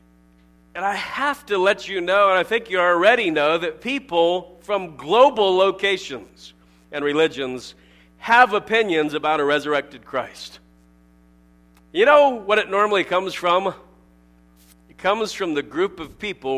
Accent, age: American, 50-69